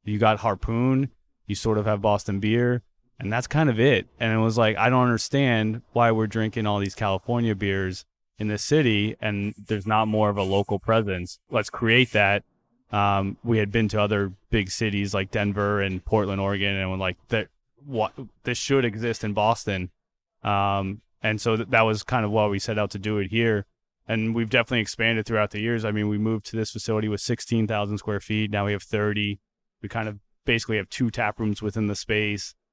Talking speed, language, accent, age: 205 wpm, English, American, 20-39